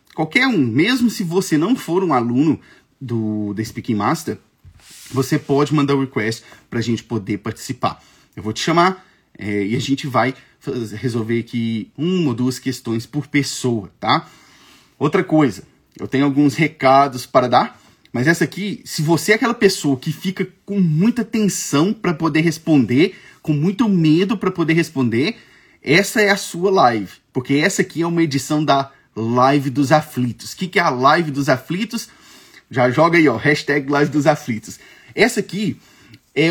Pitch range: 130-180 Hz